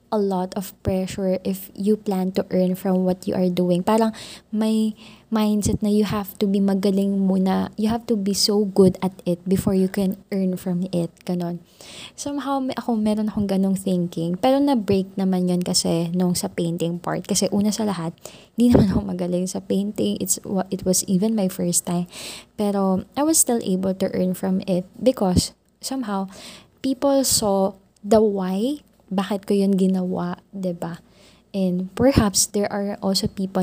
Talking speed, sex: 175 wpm, female